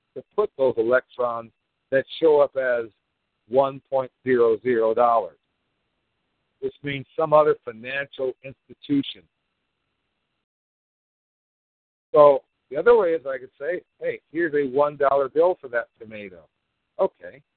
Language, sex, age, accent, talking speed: English, male, 50-69, American, 110 wpm